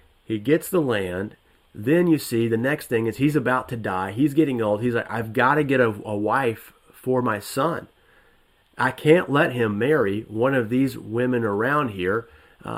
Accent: American